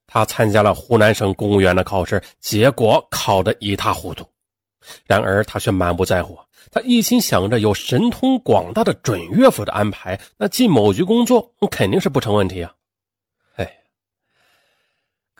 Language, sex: Chinese, male